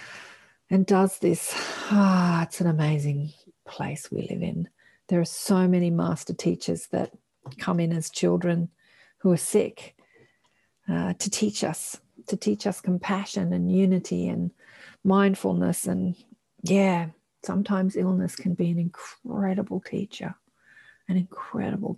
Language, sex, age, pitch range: English, female, 40-59, 160-195 Hz